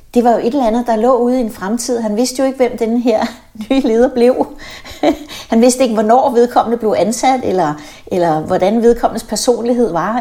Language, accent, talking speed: Danish, native, 205 wpm